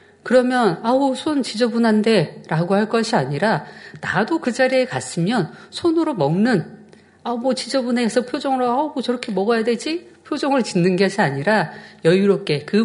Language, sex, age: Korean, female, 40-59